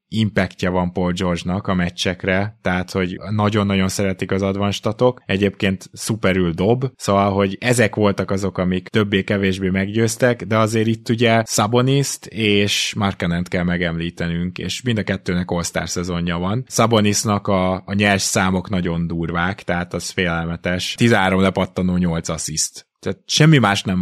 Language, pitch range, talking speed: Hungarian, 90-110 Hz, 140 wpm